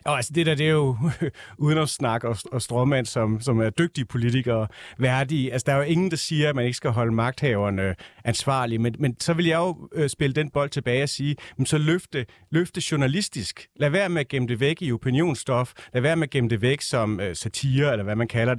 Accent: native